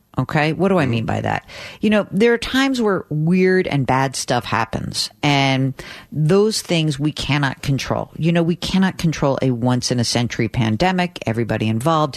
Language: English